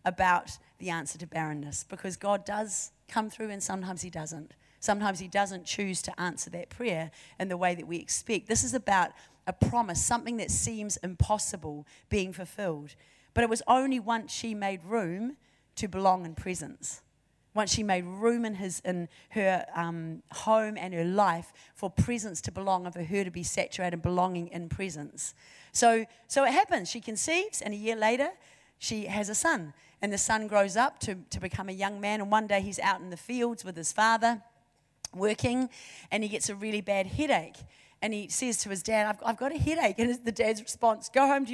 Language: English